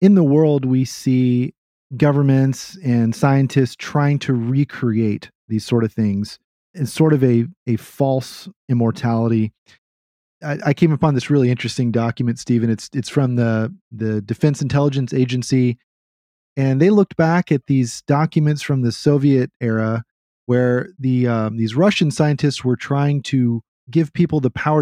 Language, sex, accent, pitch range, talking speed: English, male, American, 115-145 Hz, 150 wpm